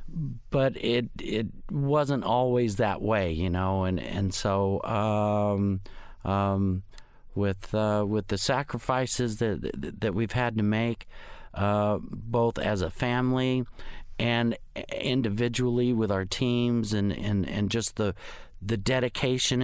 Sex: male